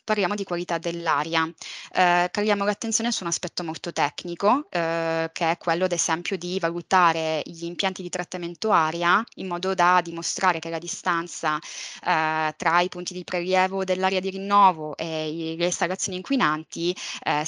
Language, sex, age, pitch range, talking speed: Italian, female, 20-39, 160-185 Hz, 160 wpm